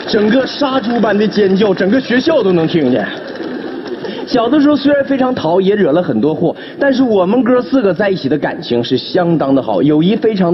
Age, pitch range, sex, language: 30-49, 175-270 Hz, male, Chinese